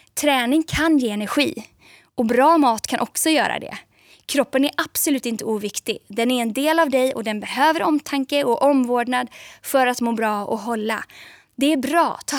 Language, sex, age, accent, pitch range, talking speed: Swedish, female, 20-39, native, 235-300 Hz, 185 wpm